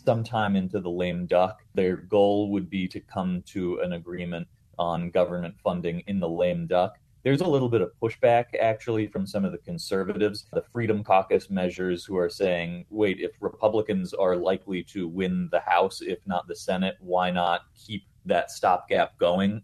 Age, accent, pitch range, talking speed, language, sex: 30-49, American, 90-110 Hz, 180 wpm, English, male